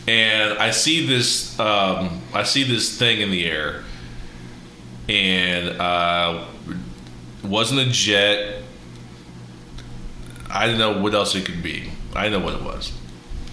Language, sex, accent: English, male, American